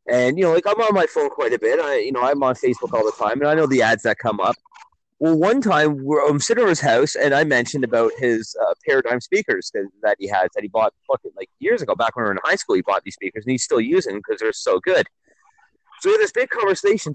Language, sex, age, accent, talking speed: English, male, 30-49, American, 280 wpm